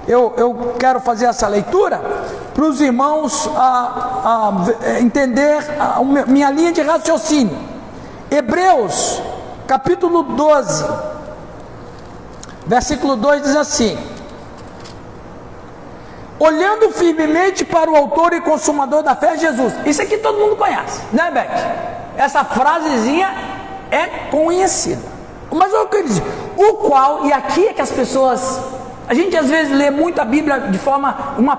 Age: 60-79